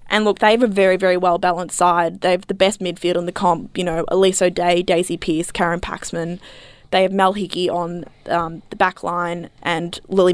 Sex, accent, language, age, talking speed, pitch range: female, Australian, English, 20-39, 210 wpm, 175-205 Hz